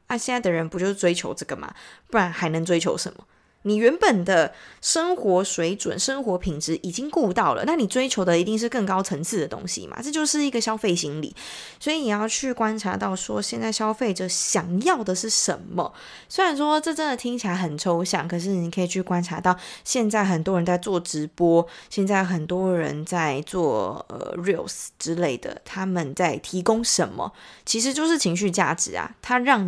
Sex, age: female, 20-39